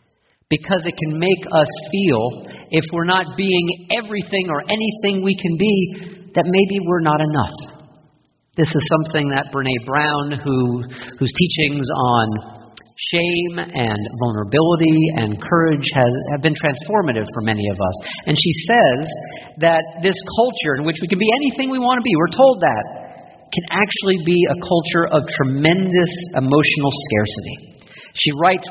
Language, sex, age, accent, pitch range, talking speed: English, male, 50-69, American, 135-190 Hz, 155 wpm